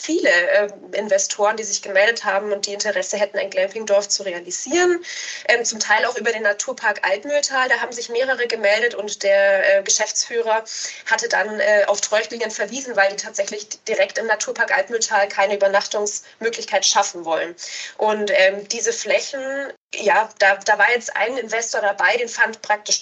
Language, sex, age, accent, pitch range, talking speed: German, female, 20-39, German, 200-265 Hz, 155 wpm